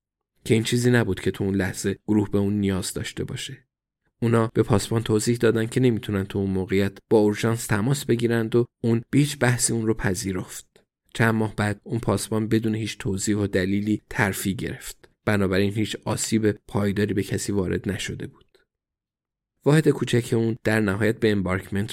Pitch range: 100-120 Hz